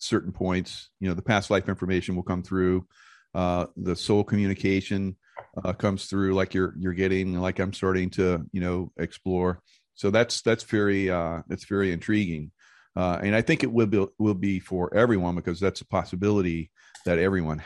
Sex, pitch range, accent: male, 90-110 Hz, American